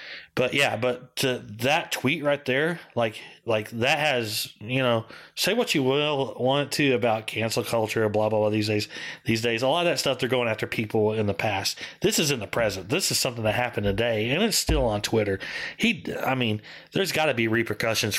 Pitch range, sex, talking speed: 110-130 Hz, male, 215 wpm